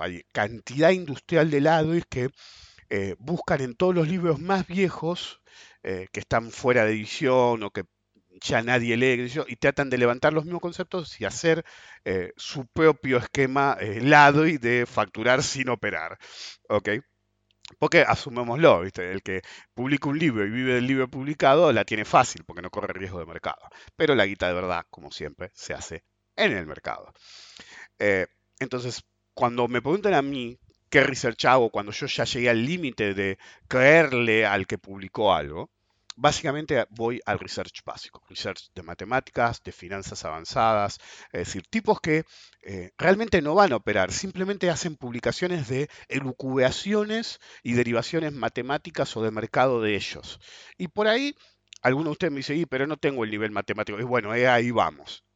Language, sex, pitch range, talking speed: English, male, 110-155 Hz, 170 wpm